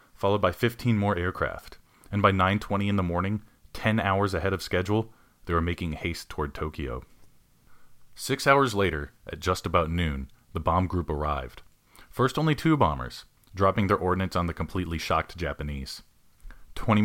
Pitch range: 85-105 Hz